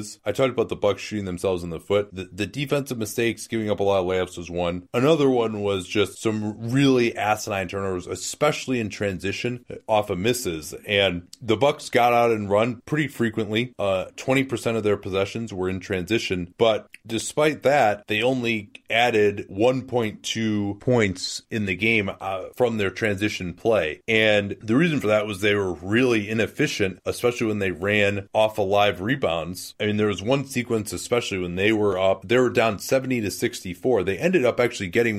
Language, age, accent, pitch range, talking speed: English, 30-49, American, 100-120 Hz, 185 wpm